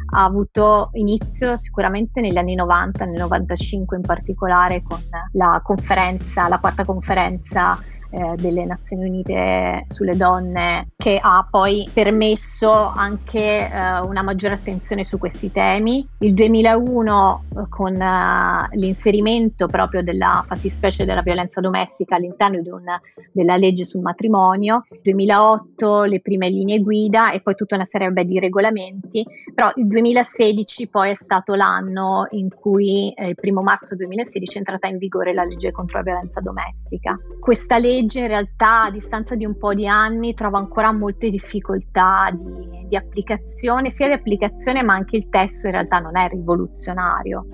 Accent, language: native, Italian